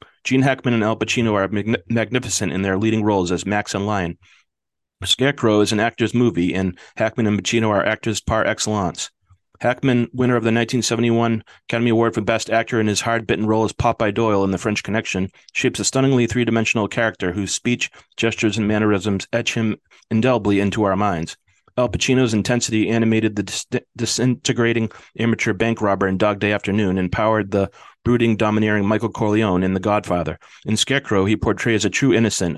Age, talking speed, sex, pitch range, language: 30-49, 175 wpm, male, 100-115 Hz, English